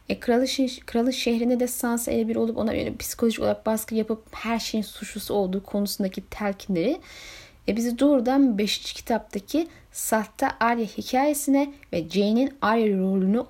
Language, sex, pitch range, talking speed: Turkish, female, 190-250 Hz, 150 wpm